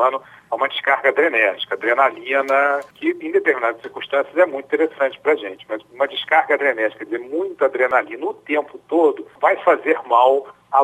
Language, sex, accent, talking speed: Portuguese, male, Brazilian, 165 wpm